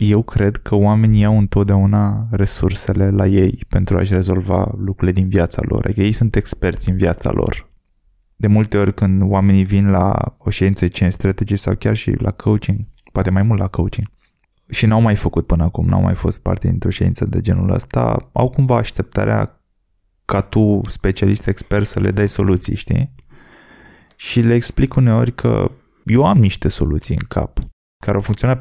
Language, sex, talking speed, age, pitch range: Romanian, male, 175 wpm, 20-39, 95-115 Hz